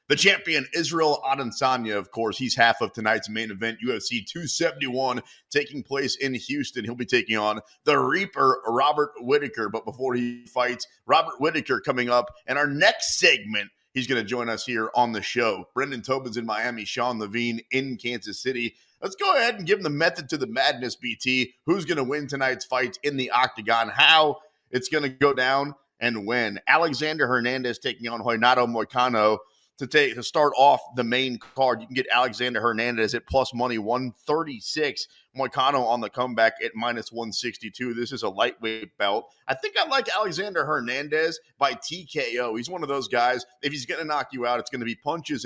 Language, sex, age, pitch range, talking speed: English, male, 30-49, 120-140 Hz, 190 wpm